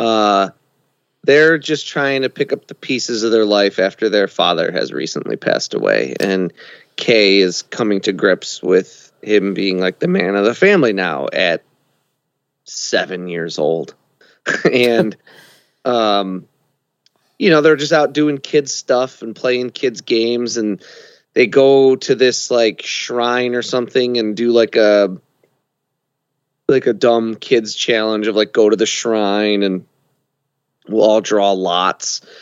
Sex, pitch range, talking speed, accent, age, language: male, 100-120 Hz, 150 wpm, American, 30-49, English